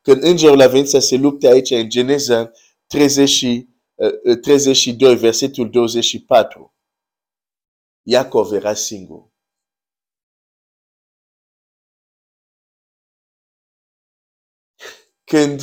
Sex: male